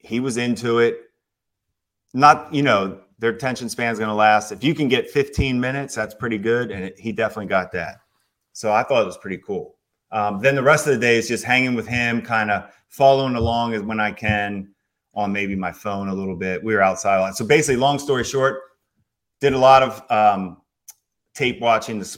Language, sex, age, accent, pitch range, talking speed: English, male, 30-49, American, 95-120 Hz, 215 wpm